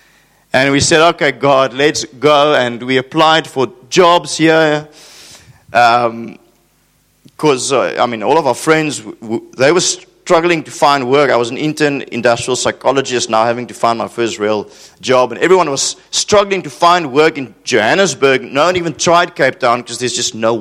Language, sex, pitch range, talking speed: English, male, 115-155 Hz, 175 wpm